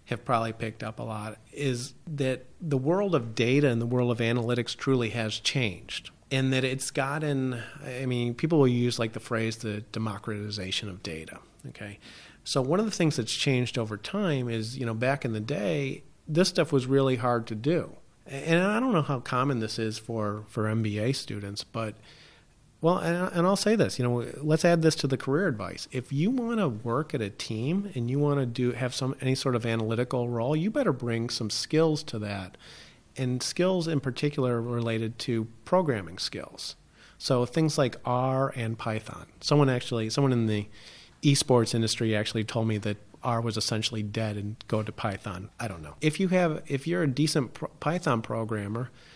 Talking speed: 195 wpm